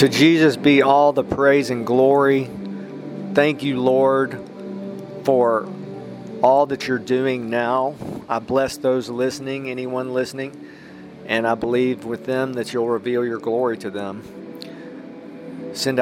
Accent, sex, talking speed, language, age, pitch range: American, male, 135 wpm, English, 40-59, 120-145 Hz